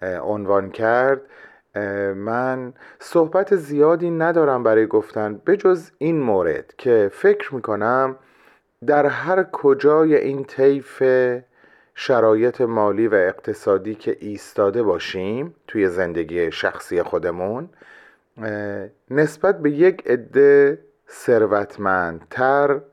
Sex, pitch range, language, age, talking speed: male, 105-165 Hz, Persian, 30-49, 90 wpm